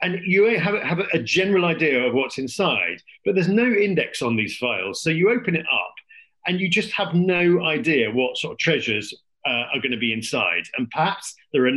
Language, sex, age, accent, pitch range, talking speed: English, male, 50-69, British, 145-205 Hz, 205 wpm